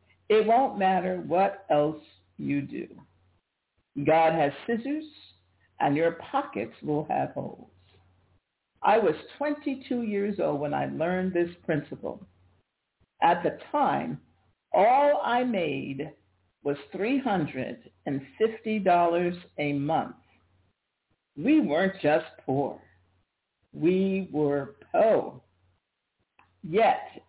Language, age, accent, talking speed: English, 60-79, American, 95 wpm